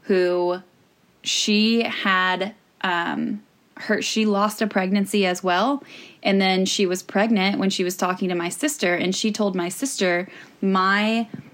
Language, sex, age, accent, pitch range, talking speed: English, female, 10-29, American, 185-220 Hz, 150 wpm